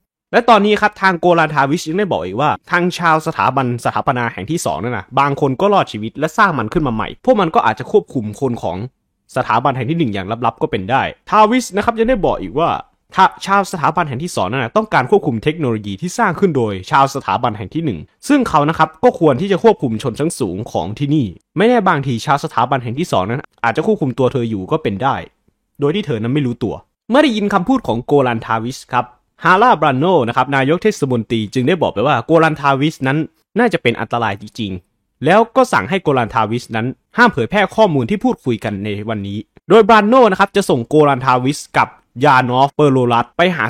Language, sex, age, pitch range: Thai, male, 20-39, 120-195 Hz